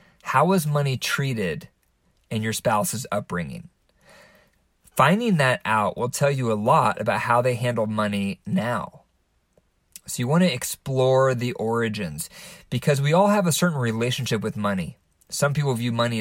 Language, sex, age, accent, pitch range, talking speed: English, male, 20-39, American, 115-150 Hz, 155 wpm